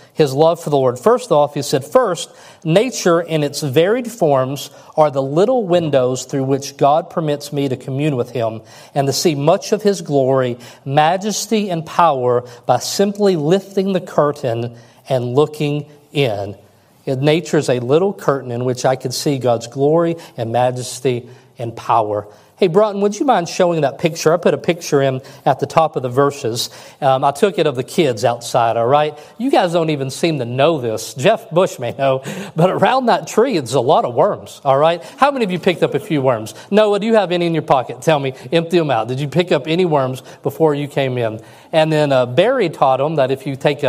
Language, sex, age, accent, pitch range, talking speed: English, male, 40-59, American, 130-175 Hz, 215 wpm